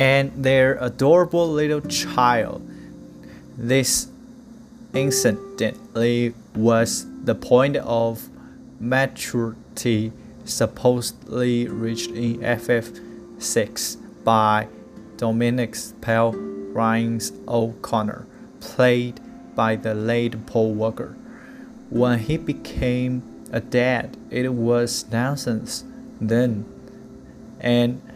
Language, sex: English, male